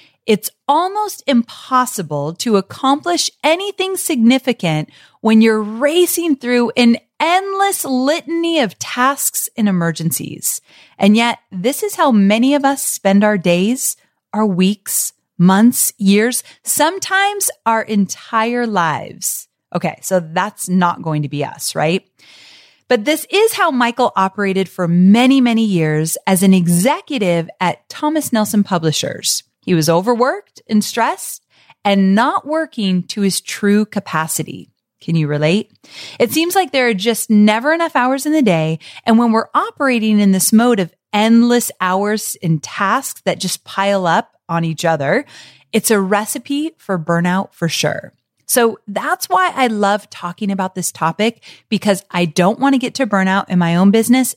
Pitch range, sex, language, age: 185-265 Hz, female, English, 30-49